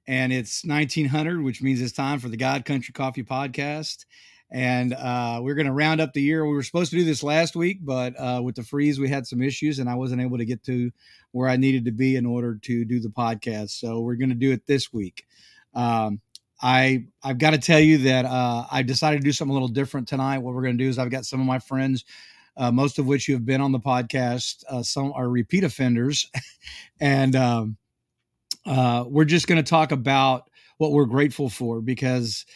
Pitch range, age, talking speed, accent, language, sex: 120-140 Hz, 40-59, 230 wpm, American, English, male